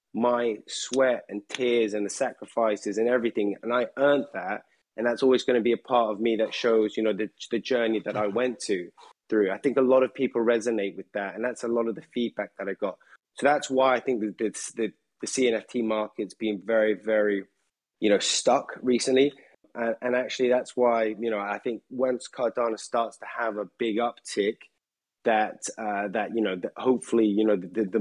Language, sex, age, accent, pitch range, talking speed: English, male, 20-39, British, 110-130 Hz, 210 wpm